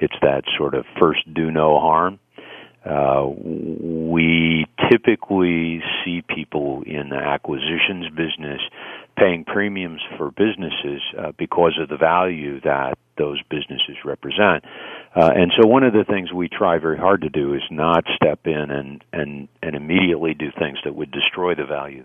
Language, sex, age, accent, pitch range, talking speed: English, male, 50-69, American, 70-85 Hz, 155 wpm